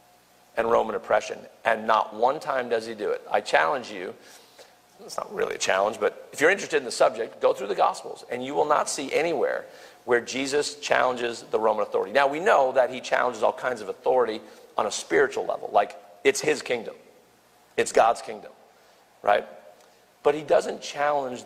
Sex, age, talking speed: male, 40-59, 190 wpm